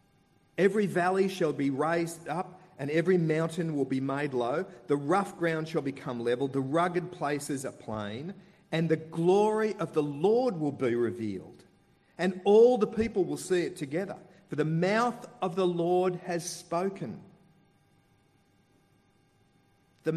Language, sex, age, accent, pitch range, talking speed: English, male, 40-59, Australian, 140-185 Hz, 150 wpm